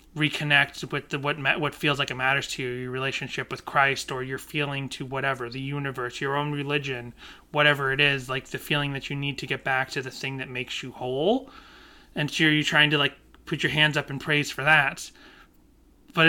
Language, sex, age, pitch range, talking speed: English, male, 30-49, 135-160 Hz, 215 wpm